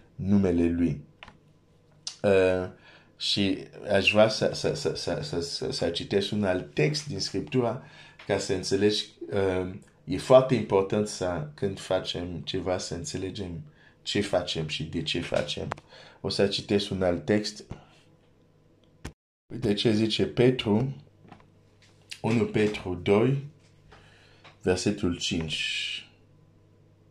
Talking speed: 115 wpm